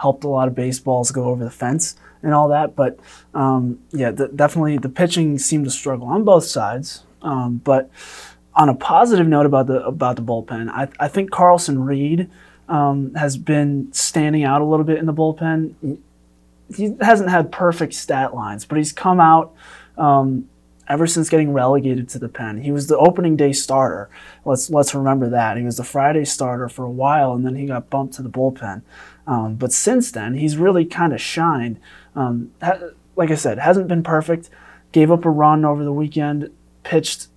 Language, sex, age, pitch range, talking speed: English, male, 20-39, 130-155 Hz, 200 wpm